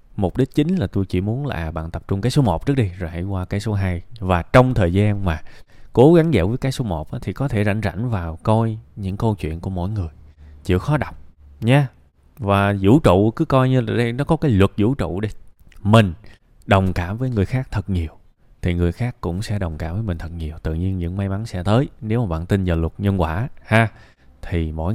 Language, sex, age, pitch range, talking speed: Vietnamese, male, 20-39, 90-120 Hz, 250 wpm